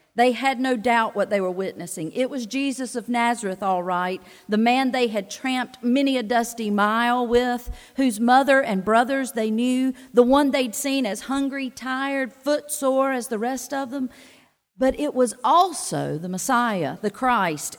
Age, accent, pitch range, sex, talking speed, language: 50-69, American, 210-275 Hz, female, 180 wpm, English